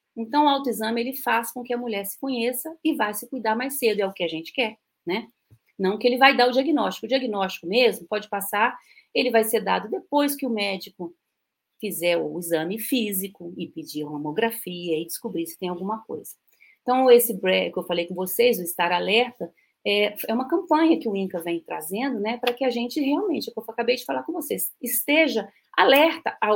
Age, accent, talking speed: 40-59, Brazilian, 210 wpm